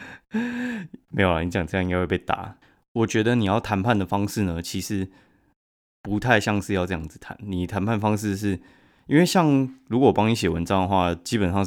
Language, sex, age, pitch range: Chinese, male, 20-39, 90-110 Hz